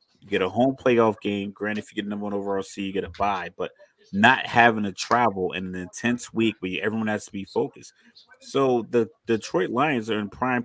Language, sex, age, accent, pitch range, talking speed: English, male, 30-49, American, 100-120 Hz, 225 wpm